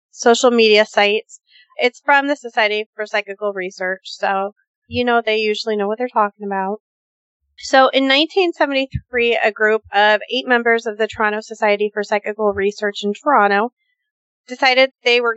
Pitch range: 210-255 Hz